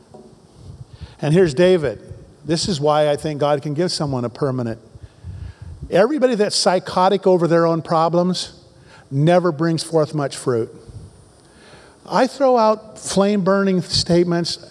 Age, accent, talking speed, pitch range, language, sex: 50-69, American, 125 wpm, 155-200 Hz, English, male